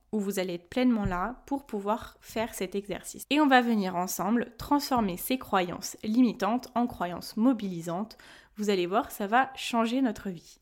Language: French